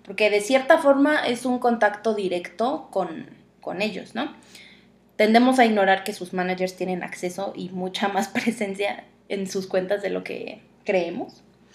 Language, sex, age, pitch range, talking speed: Spanish, female, 20-39, 195-270 Hz, 160 wpm